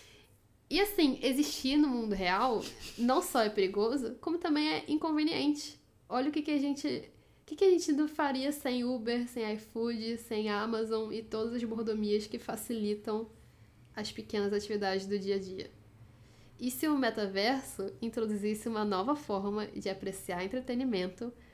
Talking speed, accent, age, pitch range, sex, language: 155 wpm, Brazilian, 10-29, 205-245 Hz, female, Portuguese